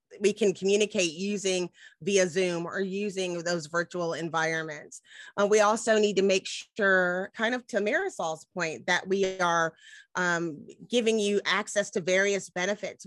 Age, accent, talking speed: 30-49, American, 150 wpm